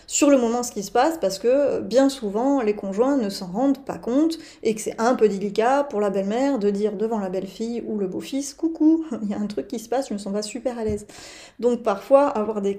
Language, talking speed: French, 260 wpm